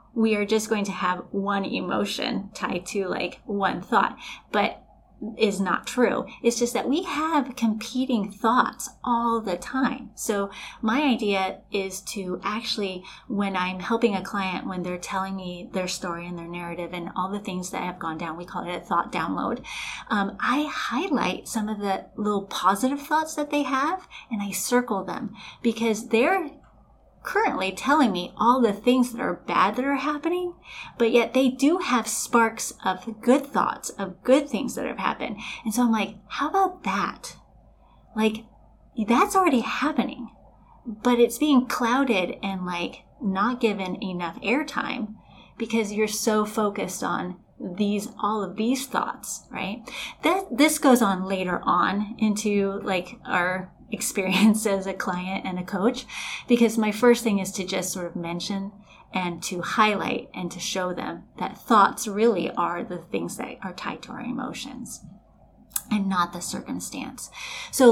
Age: 30-49